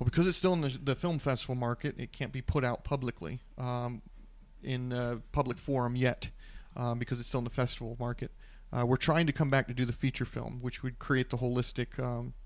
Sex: male